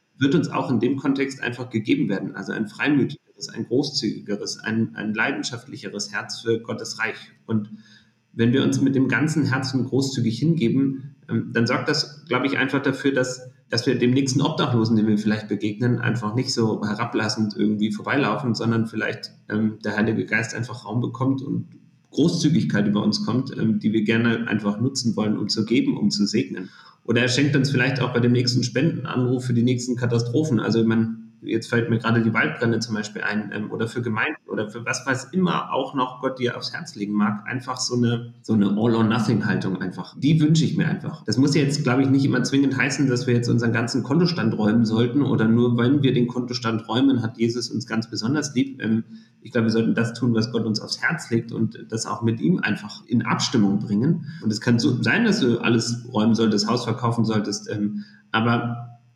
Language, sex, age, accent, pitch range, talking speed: German, male, 30-49, German, 110-130 Hz, 200 wpm